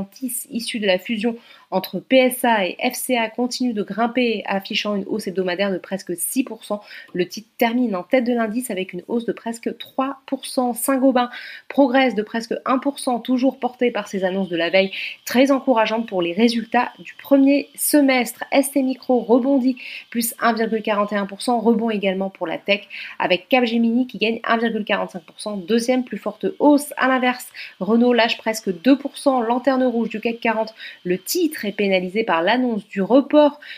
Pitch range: 195-255 Hz